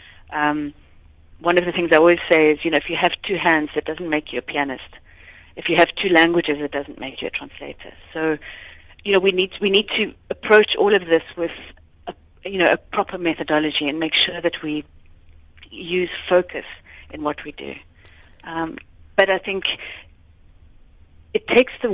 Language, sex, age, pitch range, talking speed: English, female, 60-79, 145-185 Hz, 190 wpm